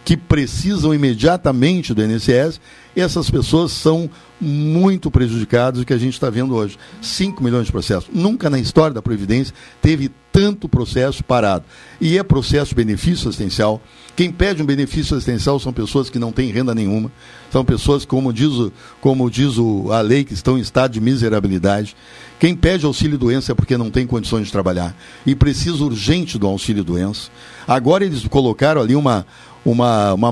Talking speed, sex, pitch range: 165 wpm, male, 115-150 Hz